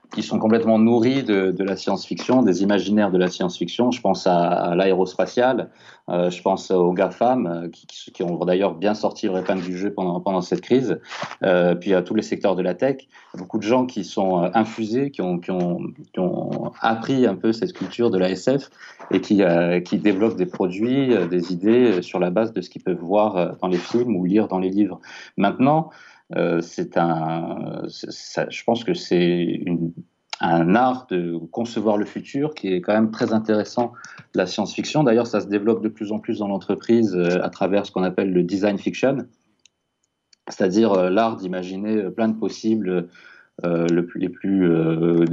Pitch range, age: 90-110 Hz, 30-49